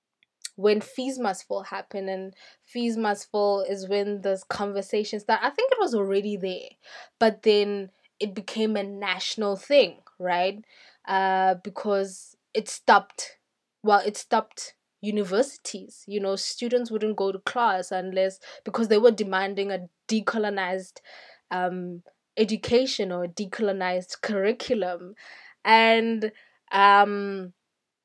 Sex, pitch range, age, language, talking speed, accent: female, 195-230 Hz, 20-39, English, 125 wpm, South African